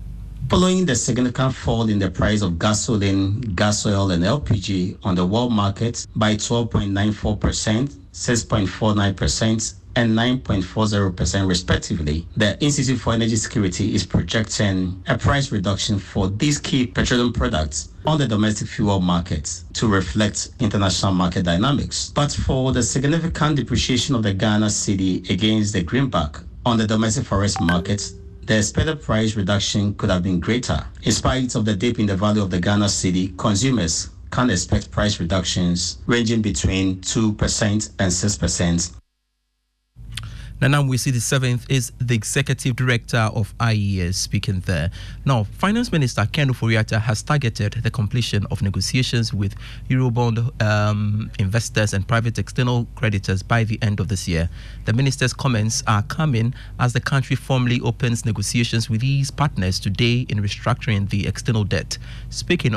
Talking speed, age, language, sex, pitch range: 145 wpm, 50-69, English, male, 100-120 Hz